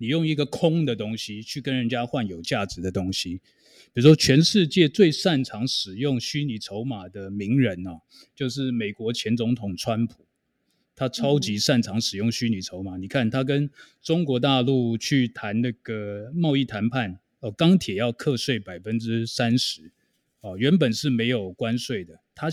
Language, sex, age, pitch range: Chinese, male, 20-39, 110-145 Hz